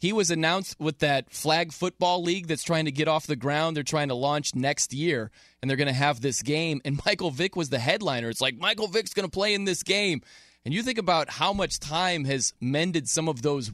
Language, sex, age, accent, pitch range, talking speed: English, male, 20-39, American, 125-175 Hz, 245 wpm